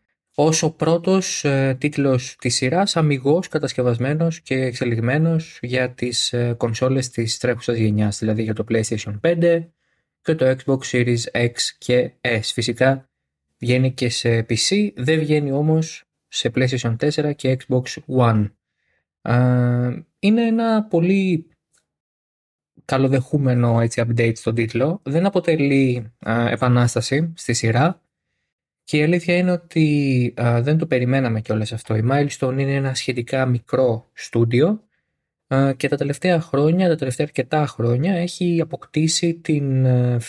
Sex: male